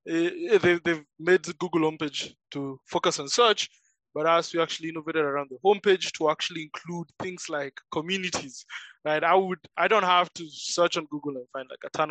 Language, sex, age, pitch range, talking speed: English, male, 20-39, 140-175 Hz, 190 wpm